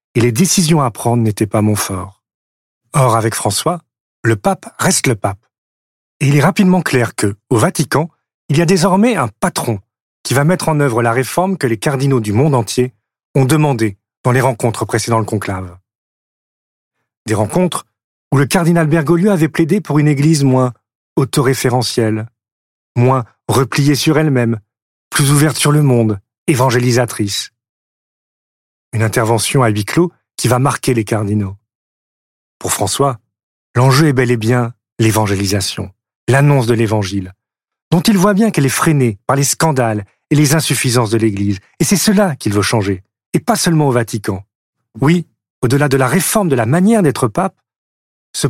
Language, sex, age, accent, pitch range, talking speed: French, male, 40-59, French, 110-150 Hz, 165 wpm